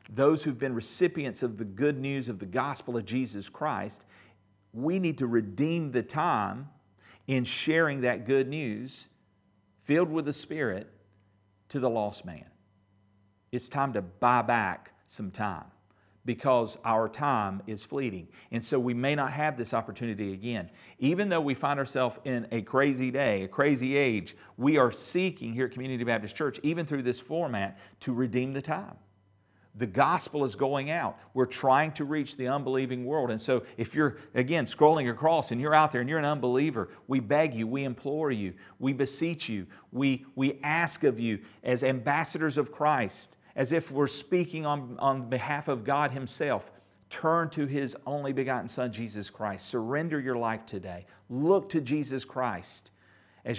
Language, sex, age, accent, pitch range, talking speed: English, male, 40-59, American, 105-145 Hz, 170 wpm